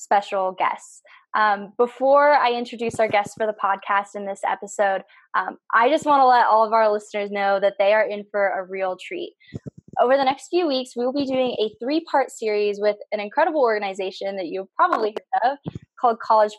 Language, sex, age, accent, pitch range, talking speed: English, female, 10-29, American, 200-255 Hz, 205 wpm